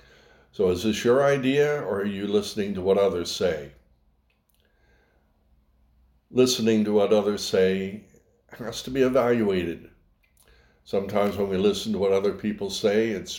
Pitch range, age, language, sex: 80-115 Hz, 60-79, English, male